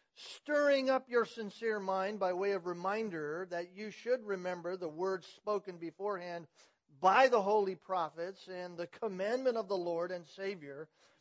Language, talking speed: English, 155 wpm